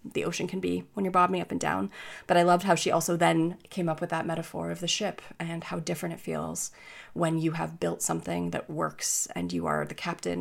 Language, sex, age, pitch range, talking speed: English, female, 20-39, 160-185 Hz, 240 wpm